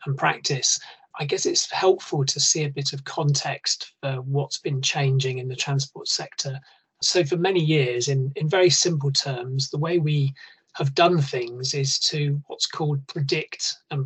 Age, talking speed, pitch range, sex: 30-49, 175 wpm, 140-170 Hz, male